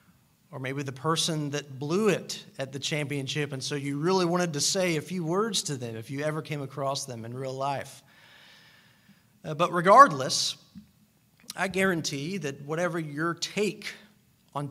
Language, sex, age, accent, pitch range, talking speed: English, male, 40-59, American, 135-180 Hz, 165 wpm